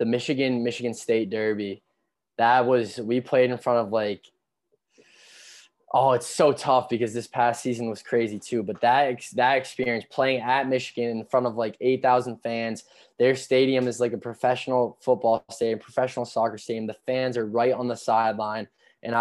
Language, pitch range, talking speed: English, 110-125 Hz, 175 wpm